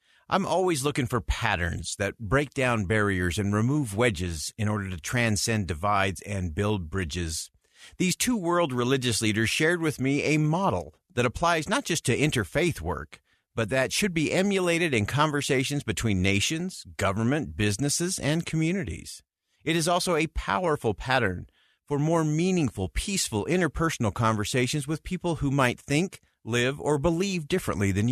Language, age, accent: English, 40-59, American